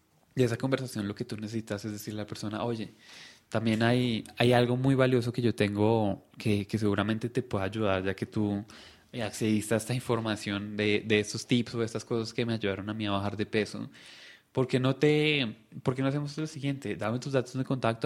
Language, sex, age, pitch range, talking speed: Spanish, male, 20-39, 105-125 Hz, 220 wpm